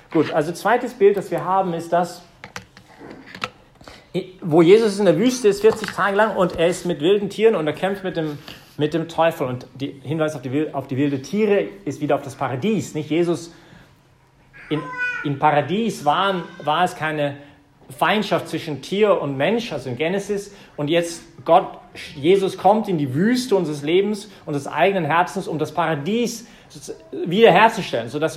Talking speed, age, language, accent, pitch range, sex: 170 wpm, 40-59, English, German, 155-195 Hz, male